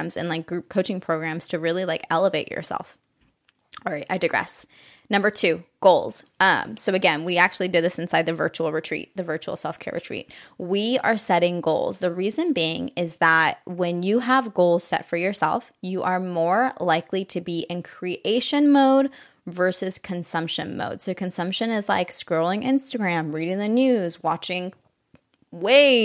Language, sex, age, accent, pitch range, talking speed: English, female, 20-39, American, 165-205 Hz, 165 wpm